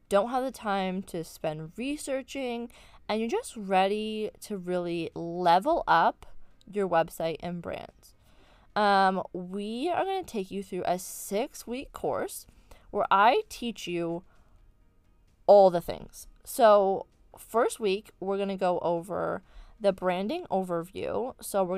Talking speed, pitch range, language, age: 135 wpm, 180-220 Hz, English, 20-39